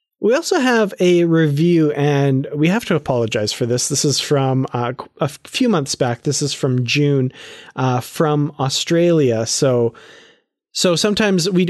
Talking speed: 160 wpm